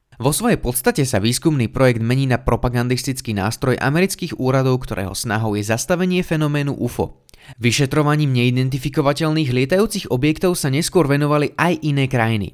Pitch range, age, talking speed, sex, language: 110-150 Hz, 20-39, 135 wpm, male, Slovak